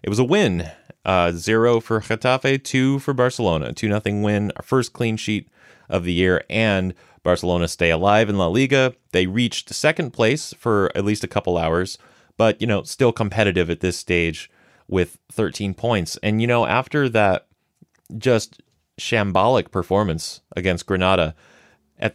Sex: male